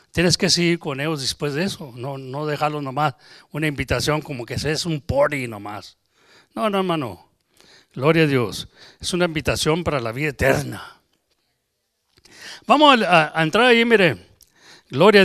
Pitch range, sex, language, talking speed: 150-205 Hz, male, English, 160 wpm